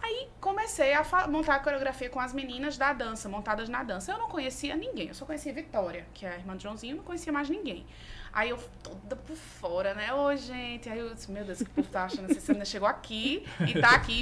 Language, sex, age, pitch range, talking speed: Portuguese, female, 20-39, 215-315 Hz, 255 wpm